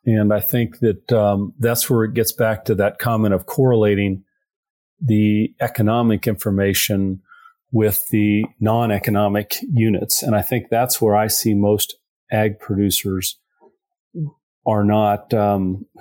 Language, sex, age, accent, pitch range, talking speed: English, male, 40-59, American, 100-115 Hz, 130 wpm